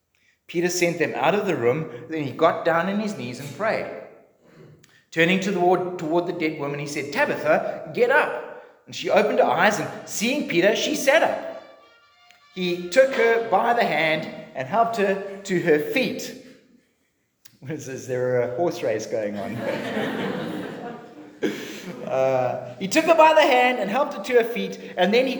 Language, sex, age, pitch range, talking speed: English, male, 30-49, 170-265 Hz, 170 wpm